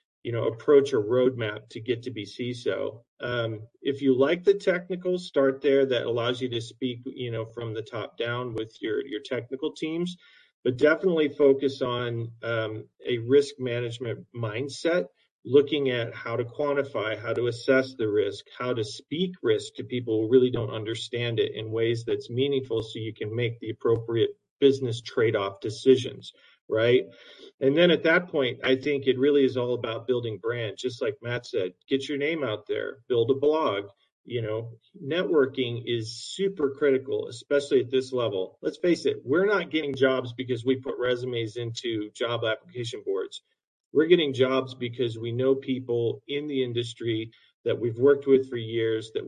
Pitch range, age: 120-145 Hz, 40-59